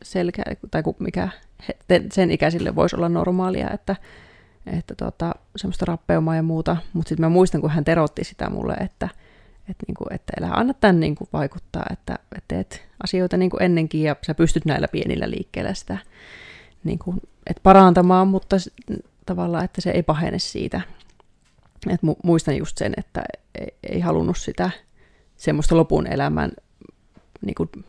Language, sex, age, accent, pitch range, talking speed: Finnish, female, 30-49, native, 155-185 Hz, 140 wpm